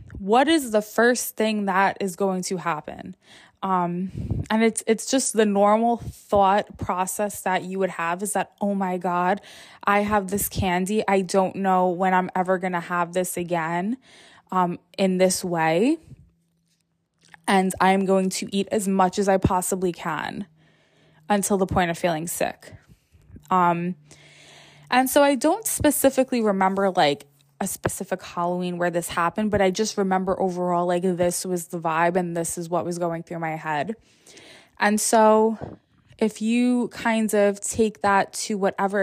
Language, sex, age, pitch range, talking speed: English, female, 20-39, 175-215 Hz, 165 wpm